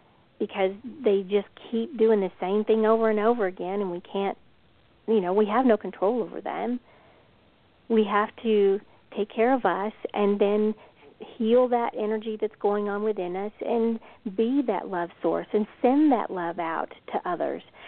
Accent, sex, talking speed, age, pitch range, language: American, female, 175 wpm, 50-69, 195-230 Hz, English